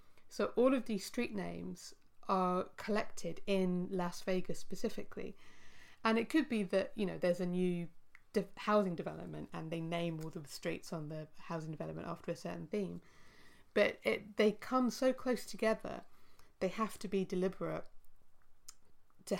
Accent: British